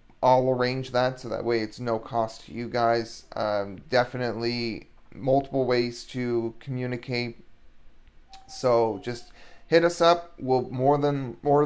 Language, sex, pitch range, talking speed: English, male, 115-135 Hz, 140 wpm